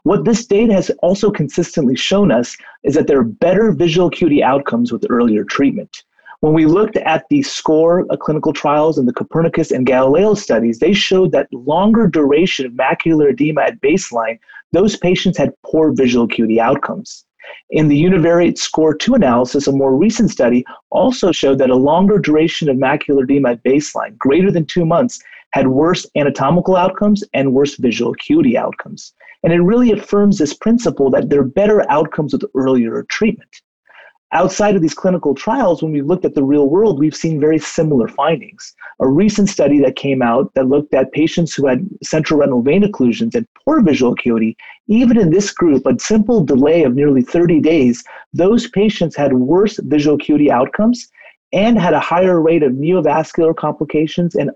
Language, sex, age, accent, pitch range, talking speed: English, male, 30-49, American, 140-205 Hz, 180 wpm